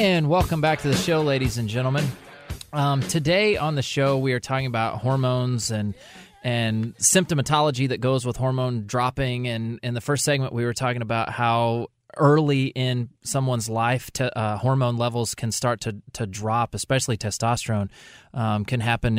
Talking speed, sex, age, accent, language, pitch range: 170 wpm, male, 20-39, American, English, 115-140 Hz